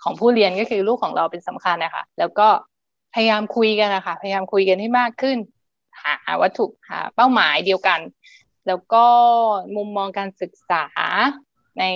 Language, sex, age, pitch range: Thai, female, 20-39, 185-235 Hz